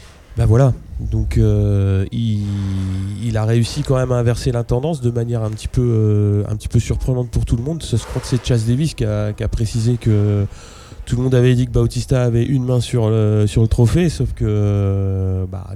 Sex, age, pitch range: male, 20-39, 105-120 Hz